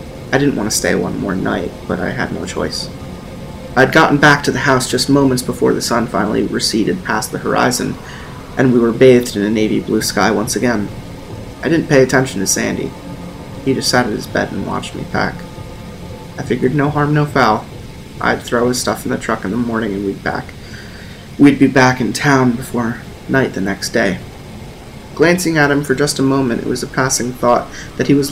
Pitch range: 120-140 Hz